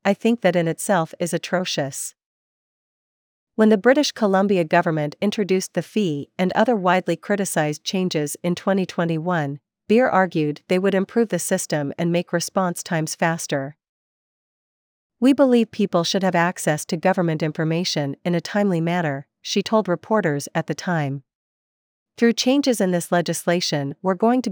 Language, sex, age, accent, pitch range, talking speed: English, female, 40-59, American, 165-200 Hz, 150 wpm